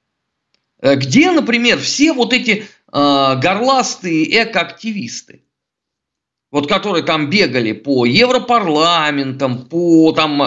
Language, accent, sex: Russian, native, male